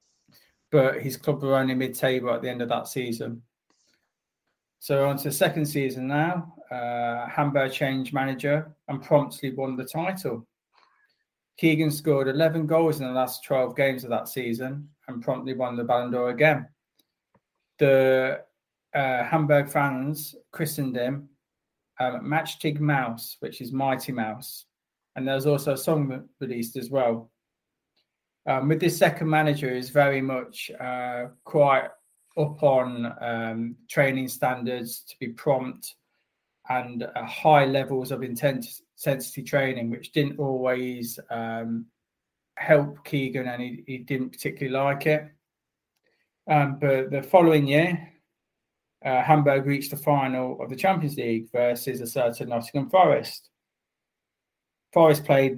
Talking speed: 140 wpm